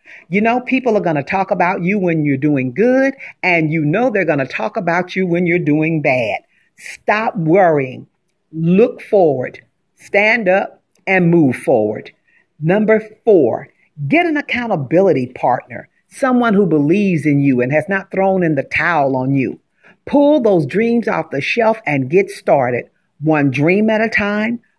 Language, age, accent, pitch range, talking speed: English, 50-69, American, 155-220 Hz, 165 wpm